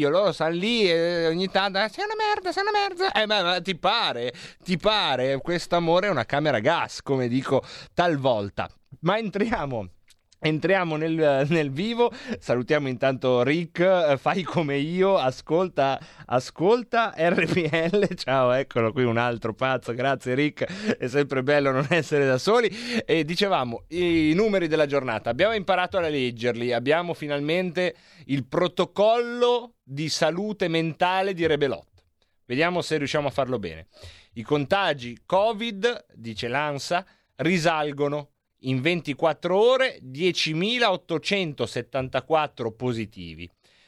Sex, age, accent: male, 30-49, native